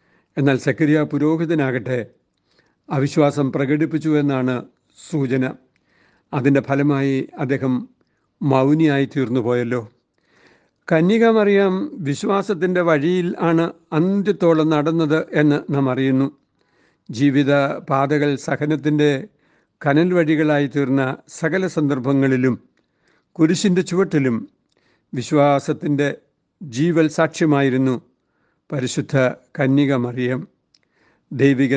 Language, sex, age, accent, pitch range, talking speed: Malayalam, male, 60-79, native, 135-155 Hz, 70 wpm